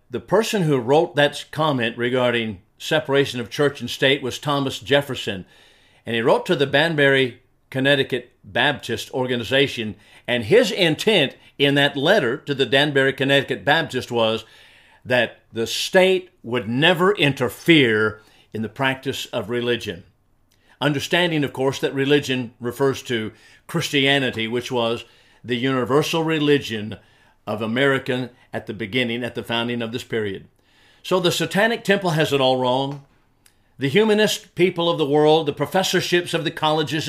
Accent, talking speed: American, 145 wpm